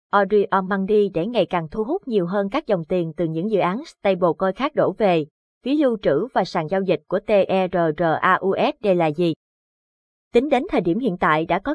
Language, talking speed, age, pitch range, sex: Vietnamese, 210 wpm, 20-39, 180-220 Hz, female